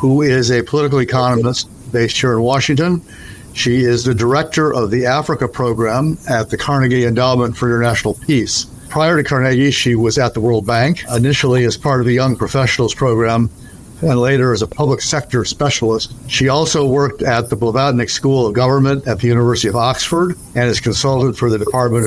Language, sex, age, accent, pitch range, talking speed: English, male, 60-79, American, 115-135 Hz, 185 wpm